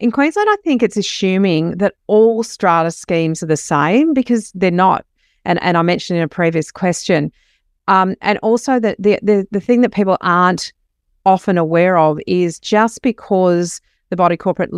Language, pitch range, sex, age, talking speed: English, 165-200 Hz, female, 40-59, 180 wpm